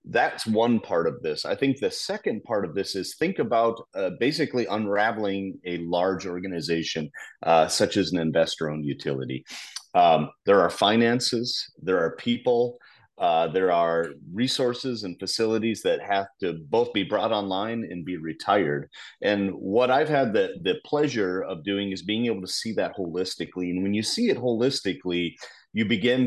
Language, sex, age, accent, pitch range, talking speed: English, male, 30-49, American, 85-115 Hz, 170 wpm